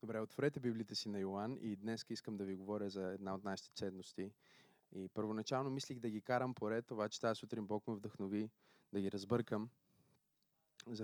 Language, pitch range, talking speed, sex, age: Bulgarian, 100-125 Hz, 190 wpm, male, 20-39